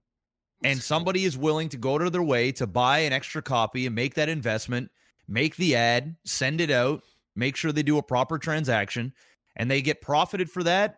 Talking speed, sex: 210 wpm, male